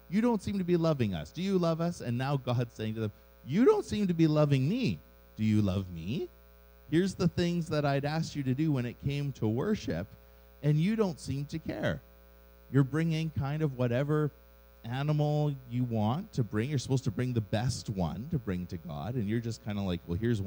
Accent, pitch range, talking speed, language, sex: American, 100-145 Hz, 225 wpm, English, male